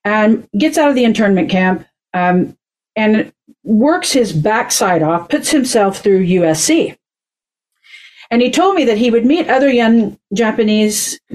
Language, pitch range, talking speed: English, 200-265 Hz, 150 wpm